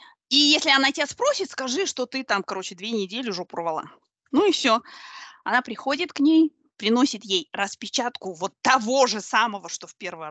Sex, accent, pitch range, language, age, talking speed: female, native, 200-325 Hz, Russian, 20-39, 180 wpm